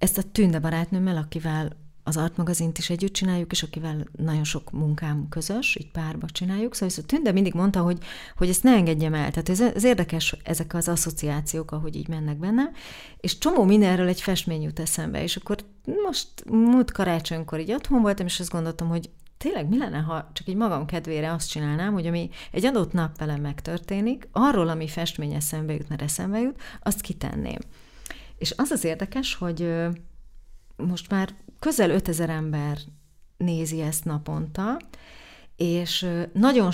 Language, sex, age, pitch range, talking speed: Hungarian, female, 30-49, 155-190 Hz, 165 wpm